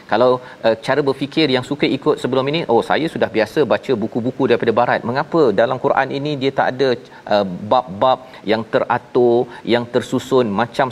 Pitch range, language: 115-145 Hz, Malayalam